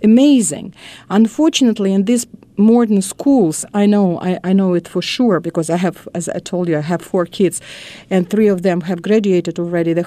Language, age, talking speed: English, 50-69, 195 wpm